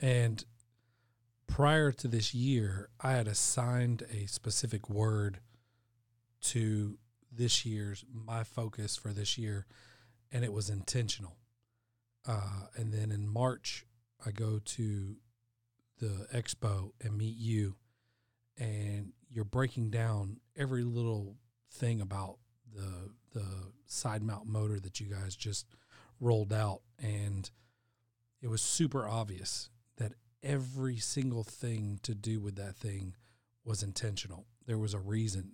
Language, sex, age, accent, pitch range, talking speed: English, male, 40-59, American, 105-120 Hz, 125 wpm